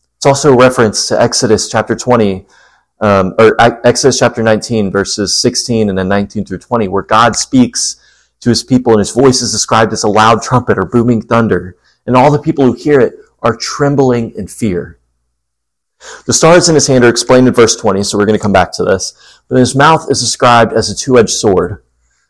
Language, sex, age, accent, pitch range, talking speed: English, male, 30-49, American, 105-130 Hz, 200 wpm